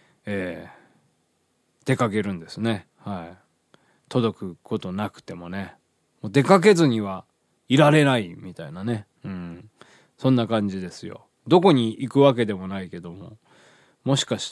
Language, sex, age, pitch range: Japanese, male, 20-39, 90-125 Hz